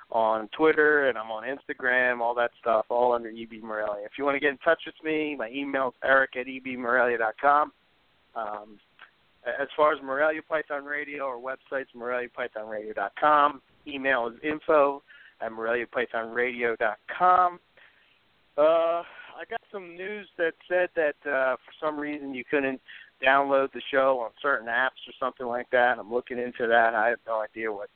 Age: 40-59